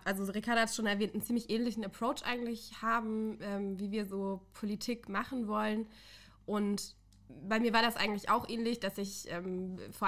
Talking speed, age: 180 wpm, 20-39